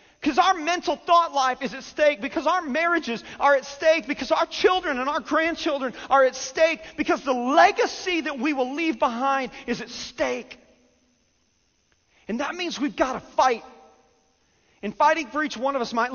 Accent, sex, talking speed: American, male, 180 wpm